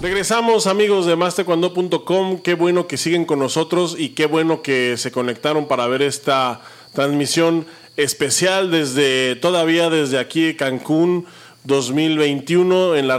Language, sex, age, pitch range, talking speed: Spanish, male, 40-59, 130-170 Hz, 135 wpm